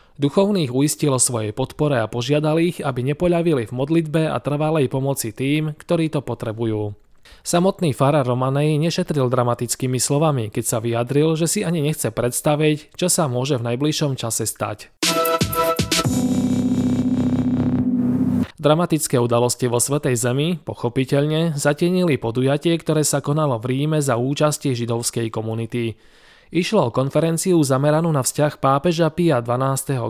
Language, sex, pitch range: Slovak, male, 120-160 Hz